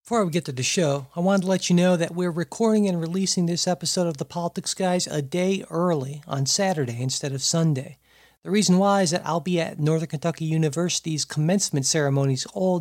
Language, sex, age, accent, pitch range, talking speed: English, male, 50-69, American, 145-180 Hz, 210 wpm